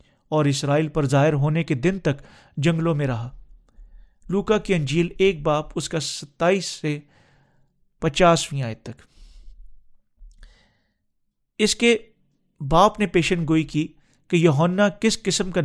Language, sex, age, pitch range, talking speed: Urdu, male, 40-59, 145-185 Hz, 135 wpm